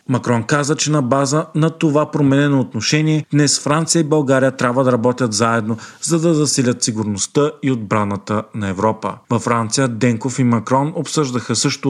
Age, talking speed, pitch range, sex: 40-59, 160 wpm, 115-145 Hz, male